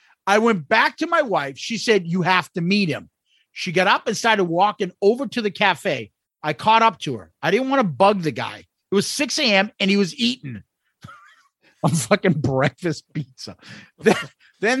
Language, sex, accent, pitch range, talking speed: English, male, American, 165-230 Hz, 195 wpm